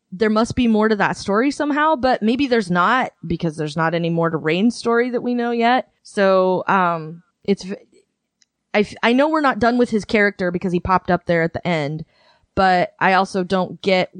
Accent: American